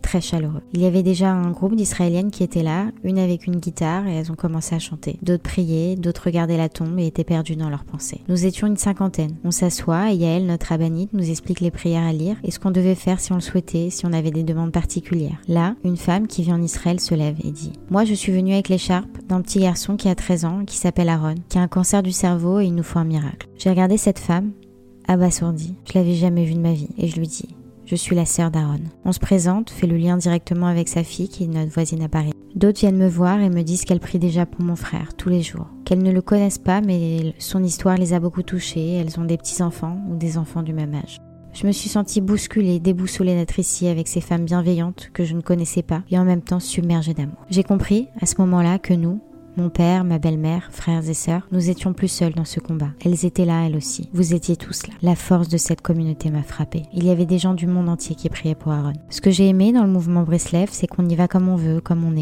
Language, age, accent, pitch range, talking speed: French, 20-39, French, 165-185 Hz, 260 wpm